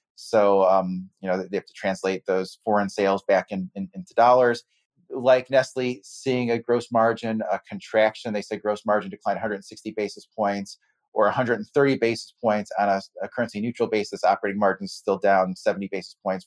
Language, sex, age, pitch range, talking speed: English, male, 30-49, 100-110 Hz, 180 wpm